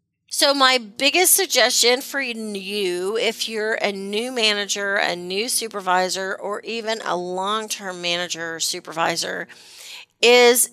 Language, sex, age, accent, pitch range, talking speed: English, female, 40-59, American, 180-250 Hz, 125 wpm